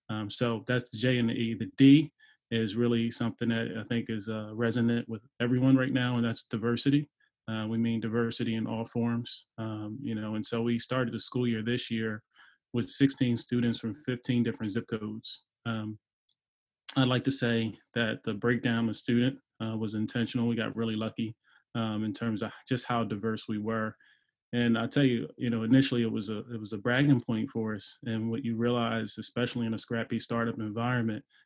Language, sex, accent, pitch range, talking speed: English, male, American, 110-120 Hz, 200 wpm